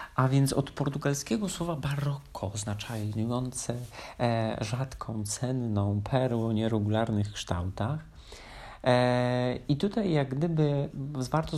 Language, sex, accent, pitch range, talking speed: Polish, male, native, 110-125 Hz, 100 wpm